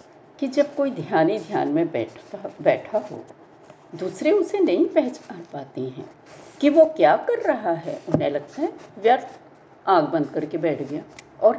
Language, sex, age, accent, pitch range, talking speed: Hindi, female, 60-79, native, 255-350 Hz, 165 wpm